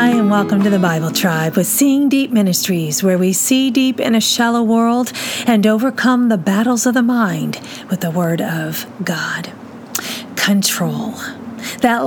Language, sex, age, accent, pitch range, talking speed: English, female, 40-59, American, 200-265 Hz, 165 wpm